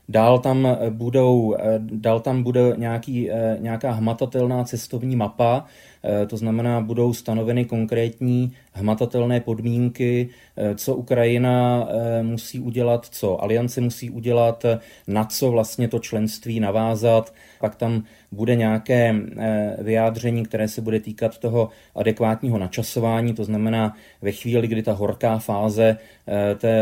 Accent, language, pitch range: native, Czech, 110-125 Hz